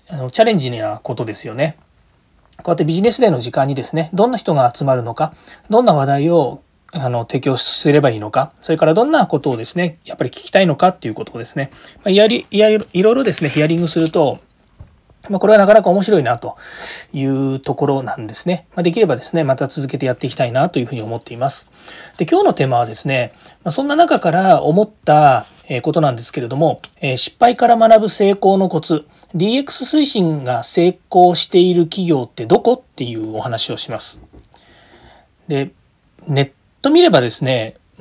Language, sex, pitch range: Japanese, male, 135-185 Hz